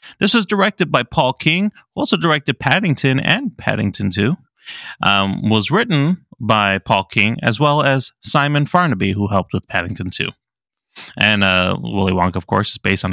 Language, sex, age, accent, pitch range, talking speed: English, male, 30-49, American, 110-180 Hz, 170 wpm